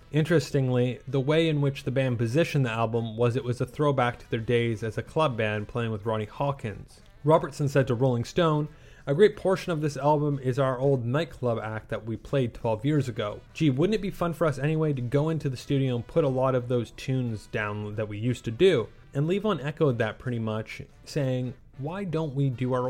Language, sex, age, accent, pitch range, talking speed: English, male, 20-39, American, 120-150 Hz, 225 wpm